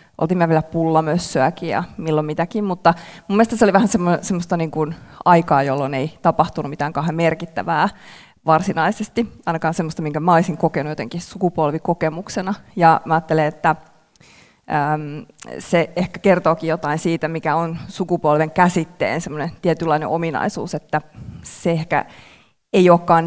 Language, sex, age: Finnish, female, 20-39